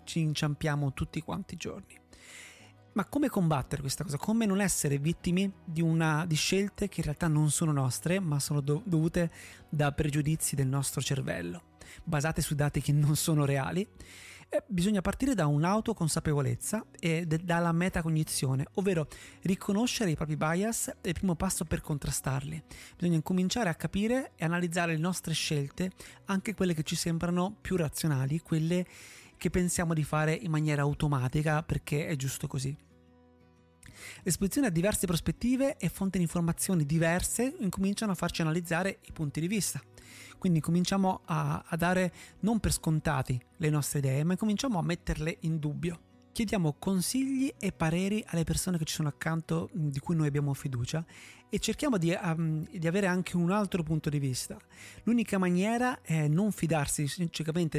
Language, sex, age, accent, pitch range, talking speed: Italian, male, 30-49, native, 150-190 Hz, 160 wpm